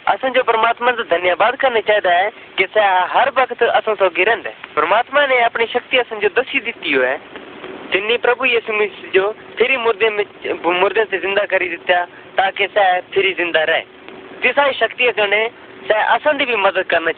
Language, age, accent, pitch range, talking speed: Hindi, 20-39, native, 190-255 Hz, 110 wpm